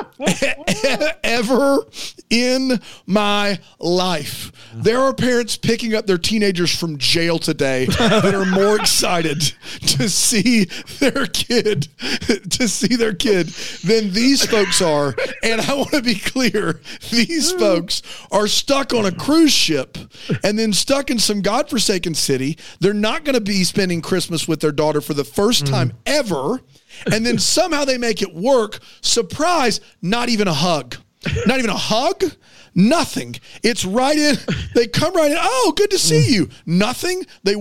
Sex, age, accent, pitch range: male, 40-59, American, 185-265 Hz